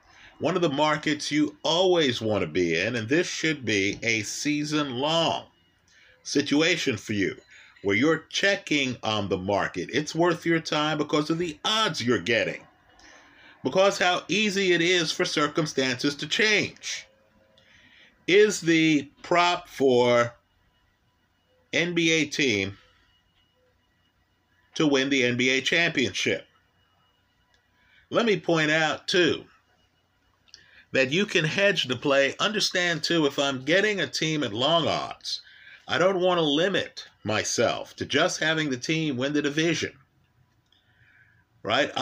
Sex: male